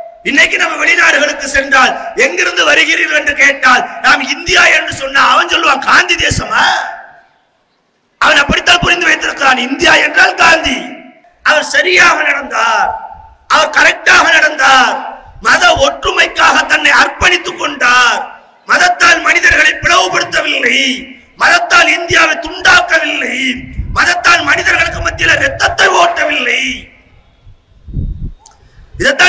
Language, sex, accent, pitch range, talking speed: English, male, Indian, 295-350 Hz, 80 wpm